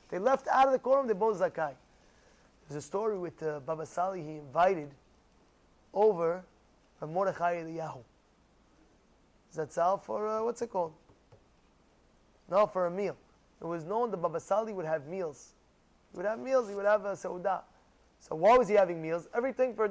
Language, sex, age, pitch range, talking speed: English, male, 20-39, 165-220 Hz, 180 wpm